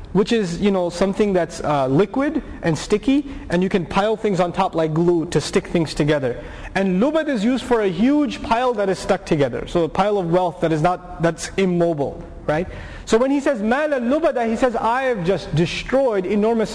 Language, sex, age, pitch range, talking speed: English, male, 30-49, 170-235 Hz, 210 wpm